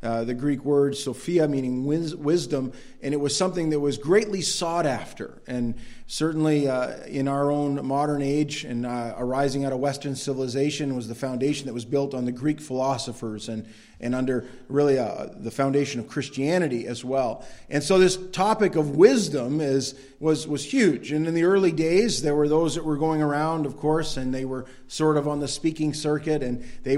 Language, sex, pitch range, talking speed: English, male, 130-155 Hz, 195 wpm